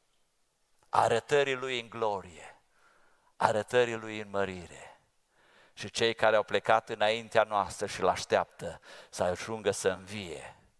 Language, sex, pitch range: English, male, 100-130 Hz